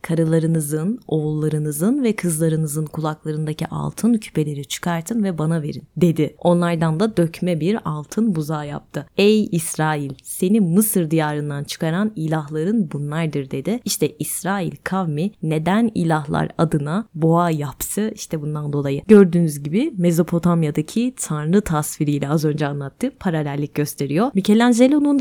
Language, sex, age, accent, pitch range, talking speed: Turkish, female, 30-49, native, 155-205 Hz, 120 wpm